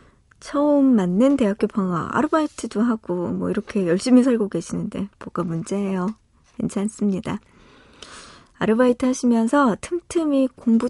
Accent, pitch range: native, 190-250 Hz